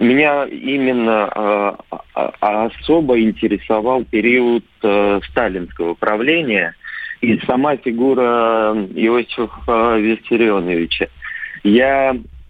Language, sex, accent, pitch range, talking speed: Russian, male, native, 100-125 Hz, 70 wpm